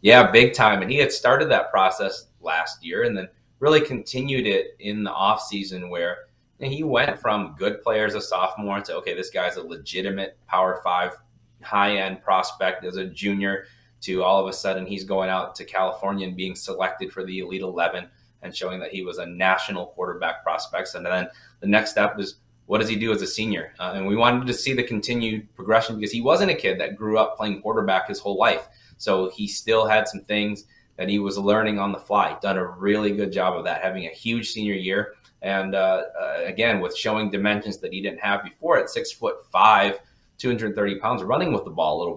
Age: 20-39